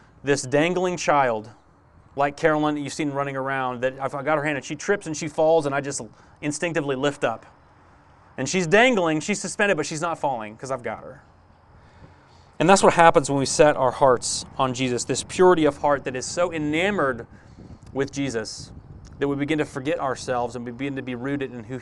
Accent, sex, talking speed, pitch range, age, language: American, male, 205 wpm, 125-165 Hz, 30-49, English